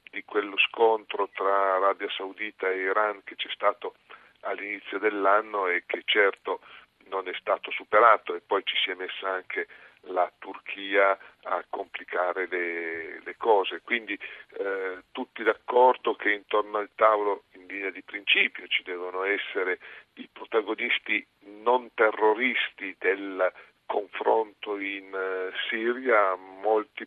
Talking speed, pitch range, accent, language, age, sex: 130 wpm, 95-130 Hz, native, Italian, 40-59, male